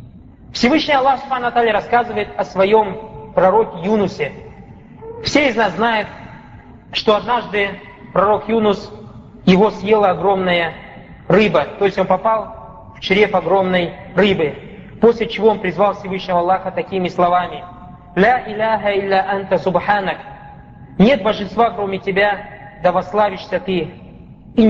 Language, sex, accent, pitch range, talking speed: Russian, male, native, 180-220 Hz, 120 wpm